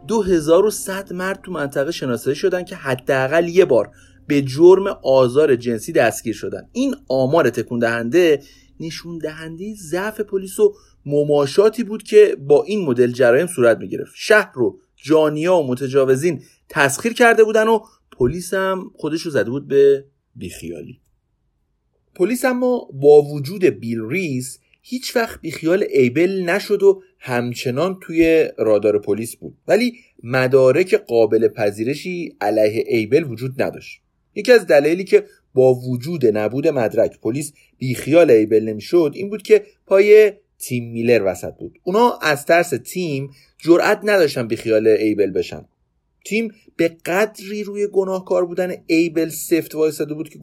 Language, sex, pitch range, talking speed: Persian, male, 130-205 Hz, 140 wpm